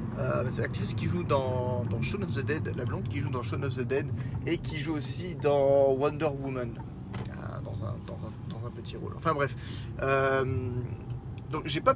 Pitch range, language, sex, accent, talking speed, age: 115-145 Hz, French, male, French, 210 wpm, 20-39